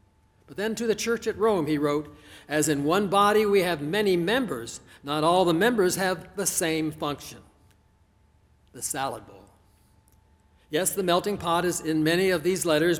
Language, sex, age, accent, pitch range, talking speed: English, male, 60-79, American, 135-210 Hz, 170 wpm